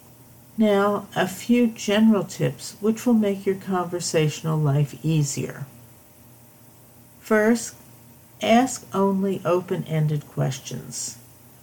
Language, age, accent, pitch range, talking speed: English, 60-79, American, 120-185 Hz, 90 wpm